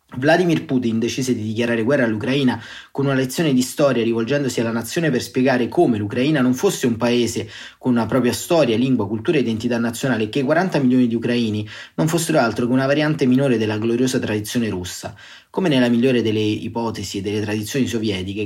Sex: male